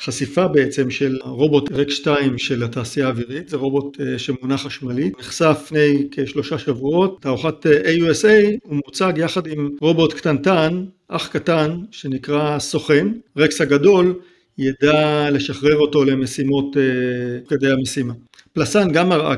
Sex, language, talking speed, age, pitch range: male, Hebrew, 125 wpm, 50-69, 130-155 Hz